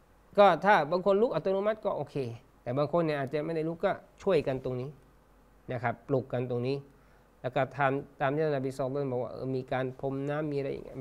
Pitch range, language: 125-155 Hz, Thai